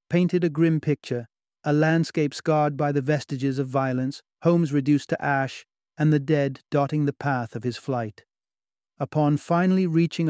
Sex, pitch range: male, 130-160 Hz